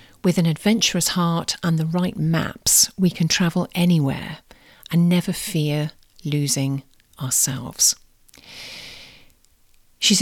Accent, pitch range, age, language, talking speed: British, 145-185 Hz, 40-59, English, 105 wpm